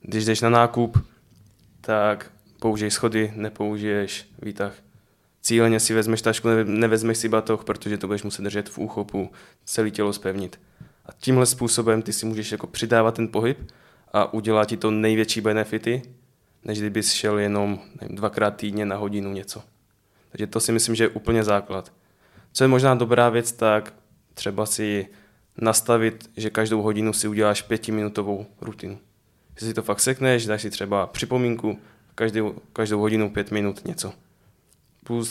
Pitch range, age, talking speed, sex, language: 105-115 Hz, 10-29, 155 wpm, male, Czech